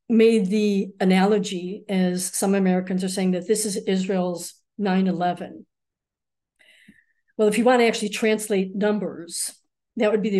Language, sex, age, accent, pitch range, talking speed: English, female, 60-79, American, 185-225 Hz, 145 wpm